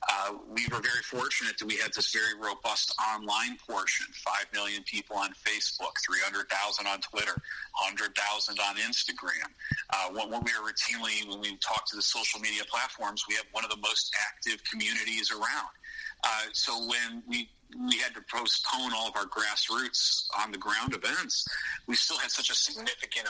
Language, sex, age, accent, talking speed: English, male, 40-59, American, 175 wpm